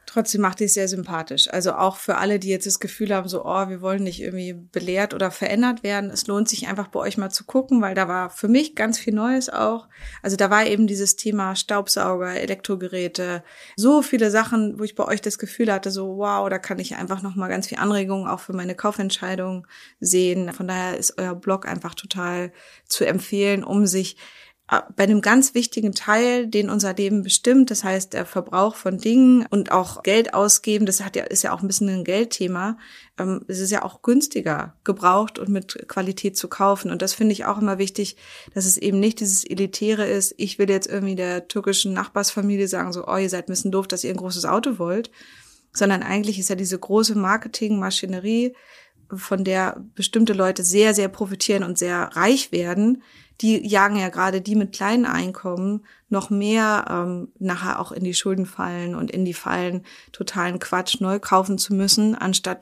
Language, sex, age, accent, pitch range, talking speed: German, female, 20-39, German, 190-210 Hz, 200 wpm